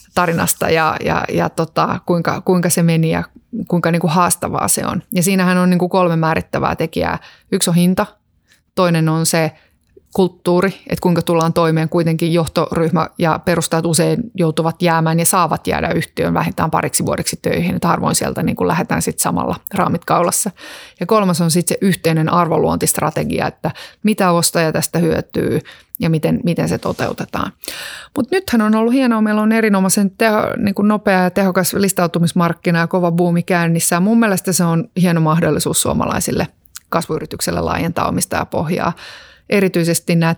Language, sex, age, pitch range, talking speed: Finnish, female, 30-49, 165-190 Hz, 160 wpm